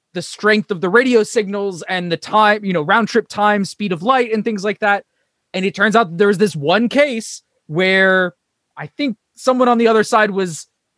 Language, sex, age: English, male, 20-39